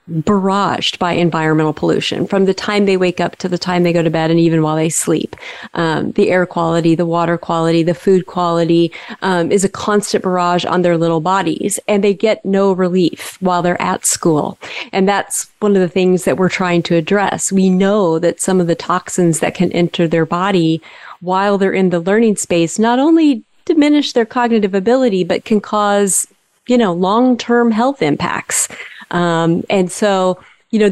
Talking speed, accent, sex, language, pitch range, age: 190 wpm, American, female, English, 170-200 Hz, 30-49